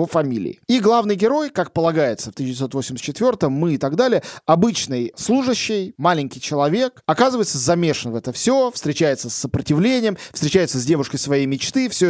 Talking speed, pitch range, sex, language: 150 wpm, 135-180 Hz, male, Russian